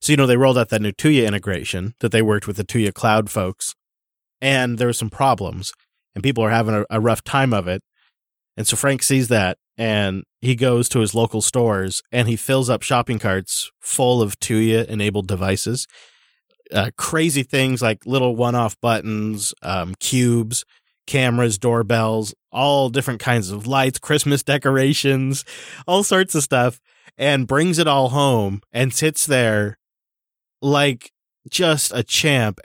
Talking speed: 165 wpm